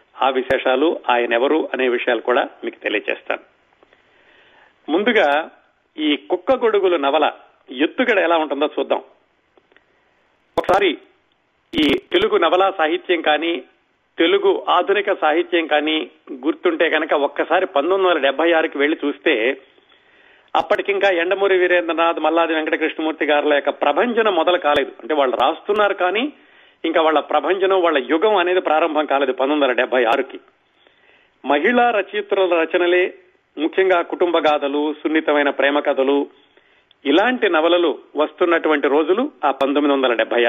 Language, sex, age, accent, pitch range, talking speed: Telugu, male, 40-59, native, 145-210 Hz, 115 wpm